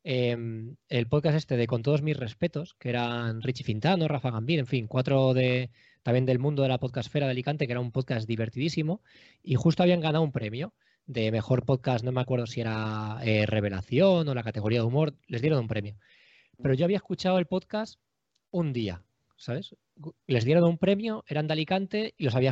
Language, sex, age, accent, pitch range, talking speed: Spanish, male, 20-39, Spanish, 115-160 Hz, 200 wpm